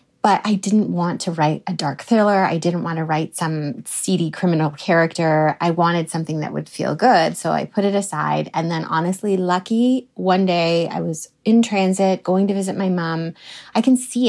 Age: 30-49